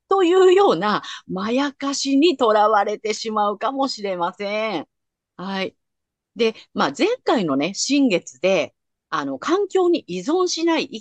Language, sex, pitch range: Japanese, female, 190-285 Hz